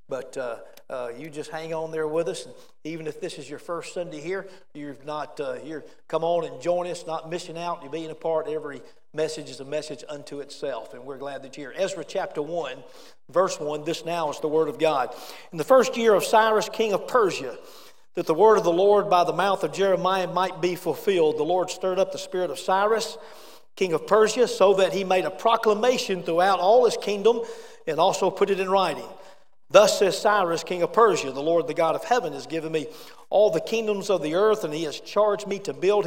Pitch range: 160-215 Hz